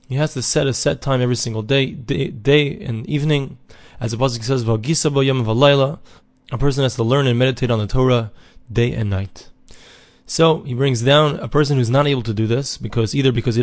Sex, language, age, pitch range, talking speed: male, English, 20-39, 115-140 Hz, 210 wpm